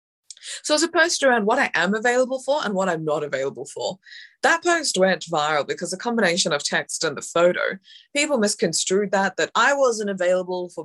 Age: 20-39